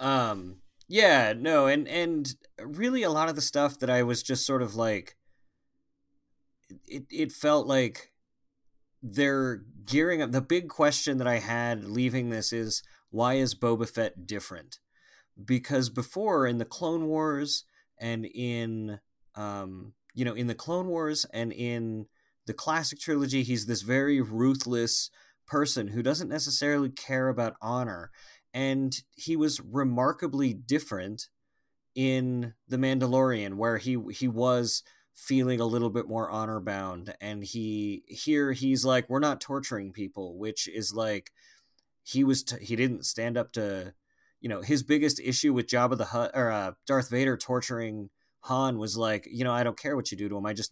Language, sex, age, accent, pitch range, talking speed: English, male, 30-49, American, 110-140 Hz, 165 wpm